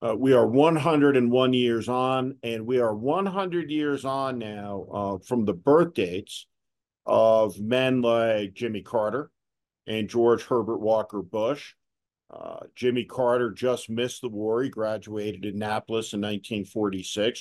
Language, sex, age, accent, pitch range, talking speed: English, male, 50-69, American, 105-125 Hz, 140 wpm